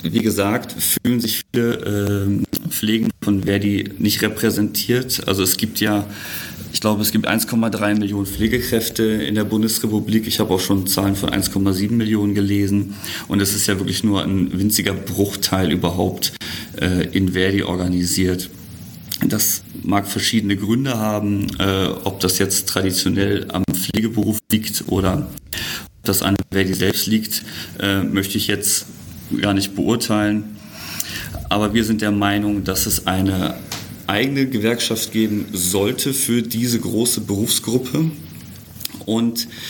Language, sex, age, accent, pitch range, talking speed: German, male, 40-59, German, 95-110 Hz, 140 wpm